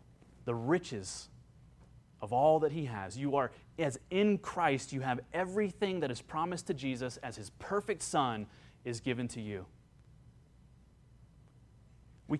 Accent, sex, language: American, male, English